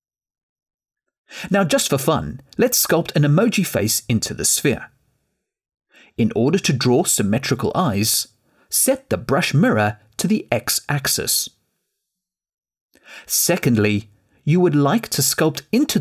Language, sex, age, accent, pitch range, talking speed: English, male, 40-59, British, 110-180 Hz, 120 wpm